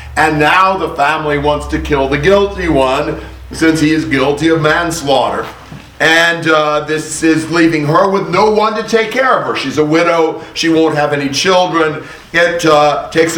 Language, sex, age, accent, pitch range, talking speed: English, male, 50-69, American, 145-180 Hz, 185 wpm